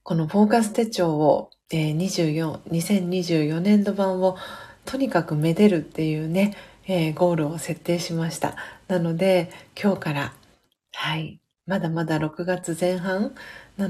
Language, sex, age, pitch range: Japanese, female, 40-59, 160-205 Hz